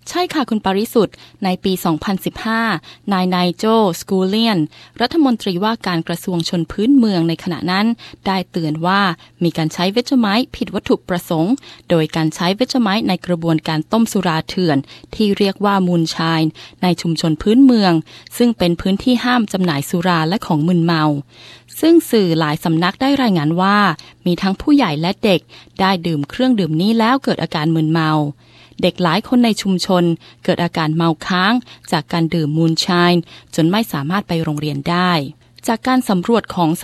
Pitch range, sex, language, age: 165-220 Hz, female, Thai, 20-39